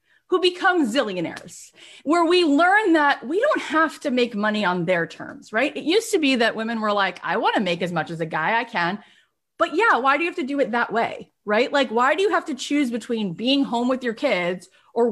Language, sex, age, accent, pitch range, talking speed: English, female, 30-49, American, 220-300 Hz, 245 wpm